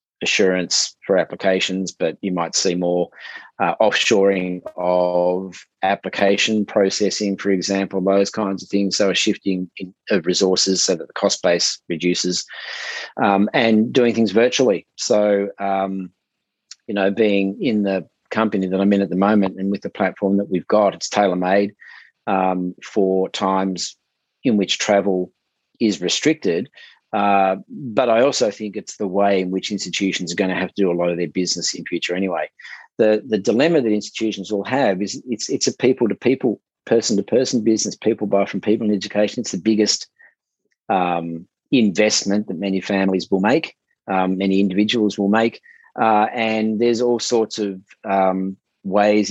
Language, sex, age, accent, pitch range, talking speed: English, male, 30-49, Australian, 95-105 Hz, 165 wpm